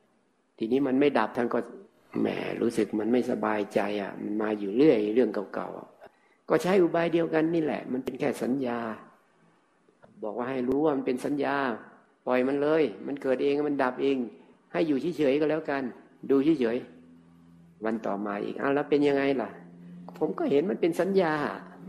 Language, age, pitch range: Thai, 60-79, 115-140 Hz